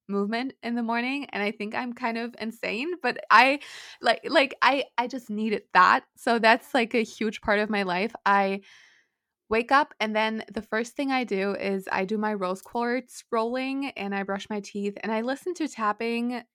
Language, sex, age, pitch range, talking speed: English, female, 20-39, 195-235 Hz, 205 wpm